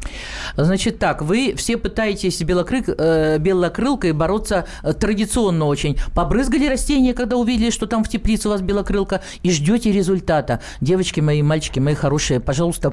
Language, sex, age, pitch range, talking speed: Russian, male, 50-69, 160-220 Hz, 150 wpm